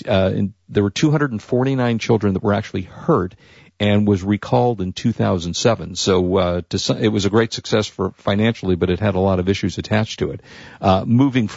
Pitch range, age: 95-120 Hz, 50-69